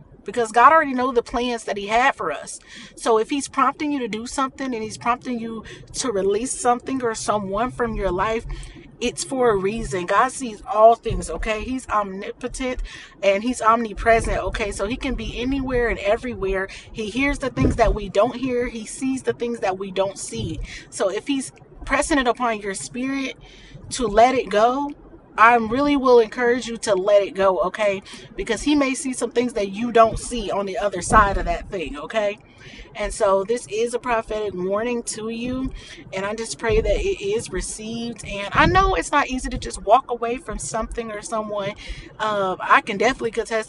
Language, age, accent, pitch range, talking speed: English, 30-49, American, 200-245 Hz, 200 wpm